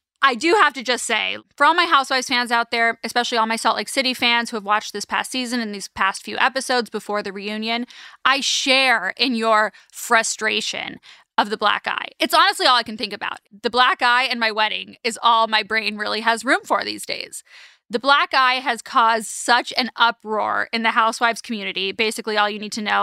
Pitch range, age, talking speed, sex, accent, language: 220-255 Hz, 20-39, 220 wpm, female, American, English